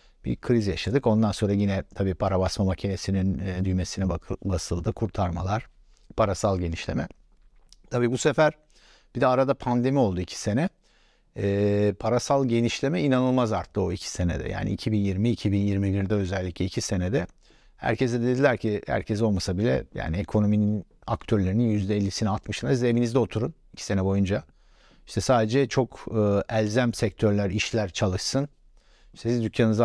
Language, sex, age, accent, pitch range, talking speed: Turkish, male, 60-79, native, 100-120 Hz, 135 wpm